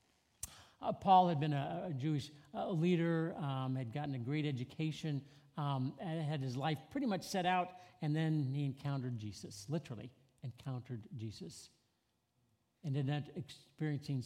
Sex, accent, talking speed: male, American, 150 wpm